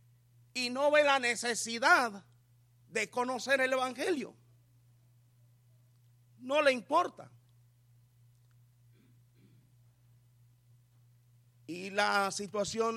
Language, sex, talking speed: English, male, 70 wpm